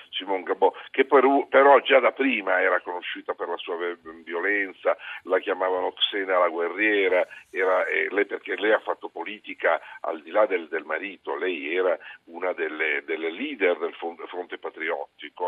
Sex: male